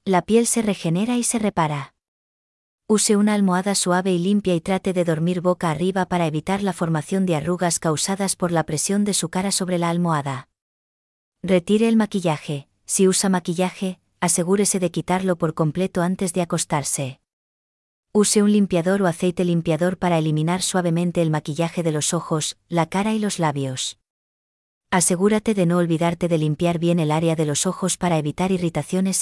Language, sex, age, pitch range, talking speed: English, female, 20-39, 165-190 Hz, 170 wpm